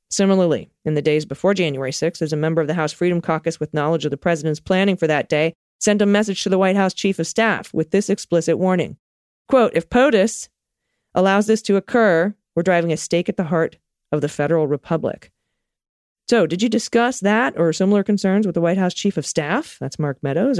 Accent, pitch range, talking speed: American, 155-200 Hz, 215 wpm